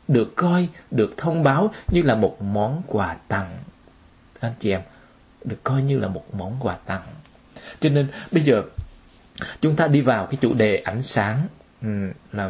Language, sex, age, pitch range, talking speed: Vietnamese, male, 20-39, 115-165 Hz, 180 wpm